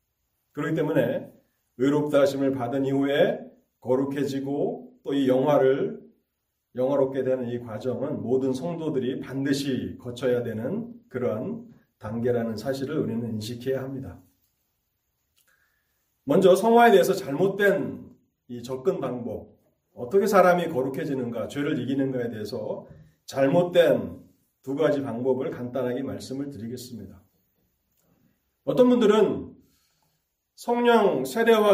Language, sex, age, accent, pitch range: Korean, male, 40-59, native, 125-180 Hz